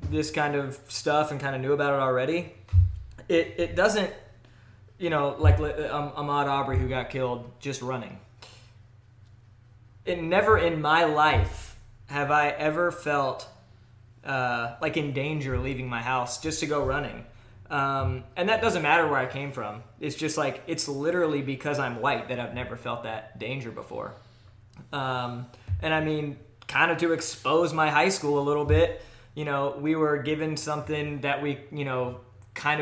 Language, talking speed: English, 170 wpm